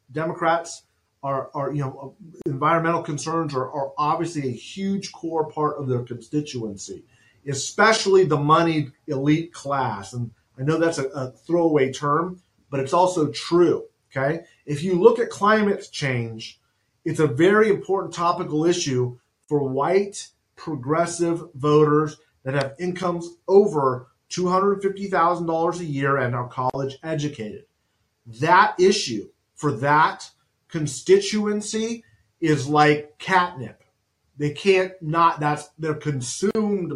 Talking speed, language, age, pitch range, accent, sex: 125 wpm, English, 40-59, 130-170 Hz, American, male